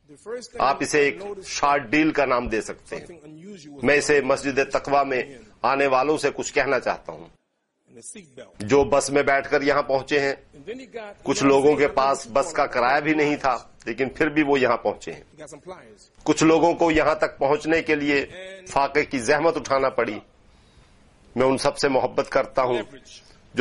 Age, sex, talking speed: 50-69, male, 160 wpm